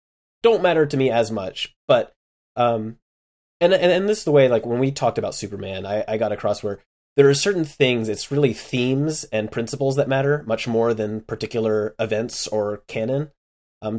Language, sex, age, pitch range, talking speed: English, male, 20-39, 110-145 Hz, 195 wpm